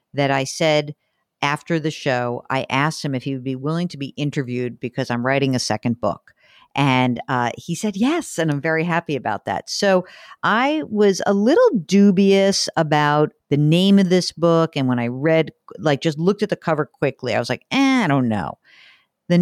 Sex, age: female, 50-69